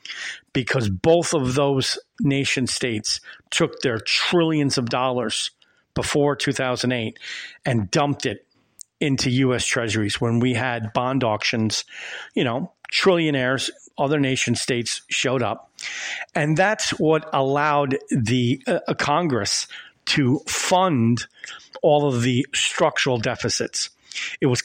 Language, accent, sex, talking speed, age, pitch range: English, American, male, 115 wpm, 40-59, 120-150 Hz